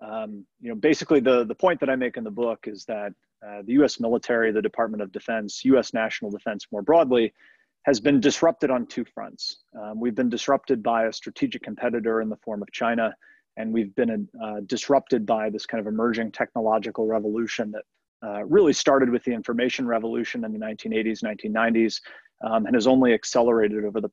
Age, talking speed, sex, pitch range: 30-49, 195 wpm, male, 110-130 Hz